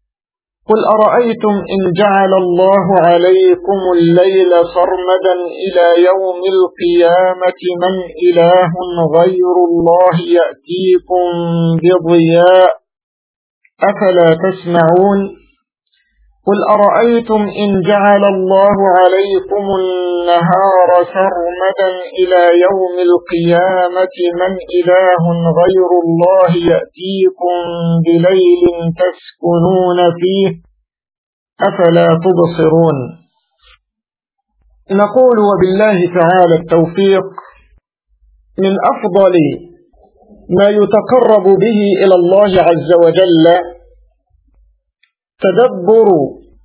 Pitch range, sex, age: 175-205 Hz, male, 50-69